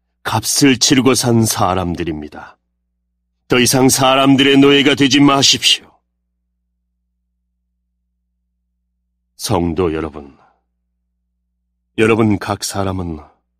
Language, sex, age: Korean, male, 40-59